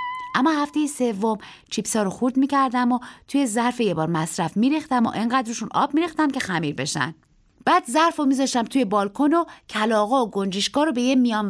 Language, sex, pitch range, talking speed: Persian, female, 205-280 Hz, 185 wpm